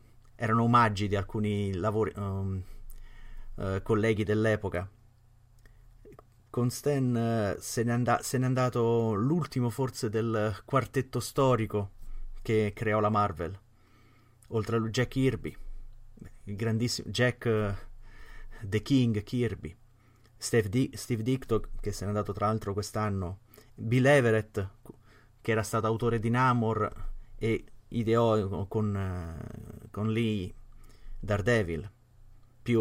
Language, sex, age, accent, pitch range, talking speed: Italian, male, 30-49, native, 105-115 Hz, 115 wpm